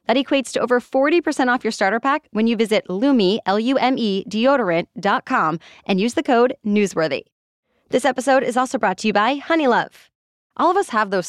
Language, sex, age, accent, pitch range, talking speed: English, female, 20-39, American, 190-255 Hz, 180 wpm